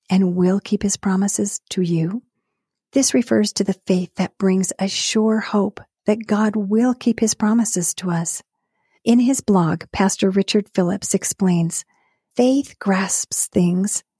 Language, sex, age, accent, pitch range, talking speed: English, female, 40-59, American, 180-215 Hz, 150 wpm